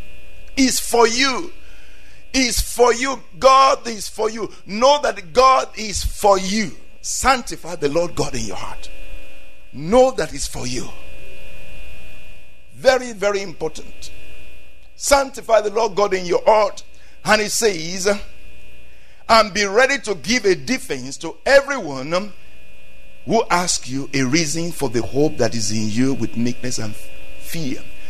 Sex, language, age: male, English, 50-69